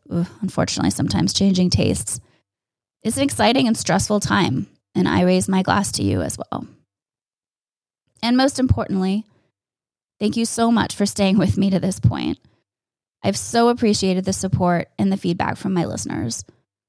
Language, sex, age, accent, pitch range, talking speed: English, female, 20-39, American, 170-225 Hz, 155 wpm